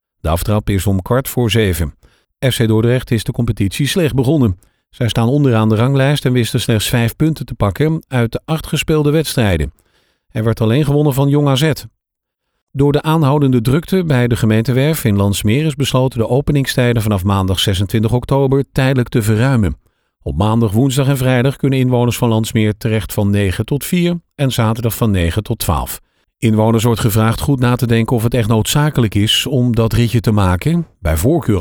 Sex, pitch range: male, 105-135 Hz